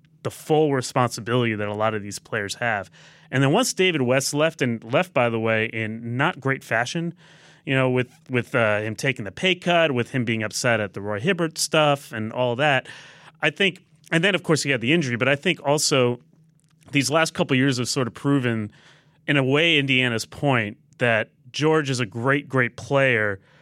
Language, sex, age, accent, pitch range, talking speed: English, male, 30-49, American, 115-150 Hz, 205 wpm